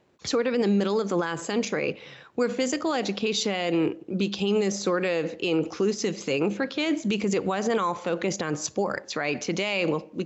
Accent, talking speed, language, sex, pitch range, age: American, 180 wpm, English, female, 165-225 Hz, 30-49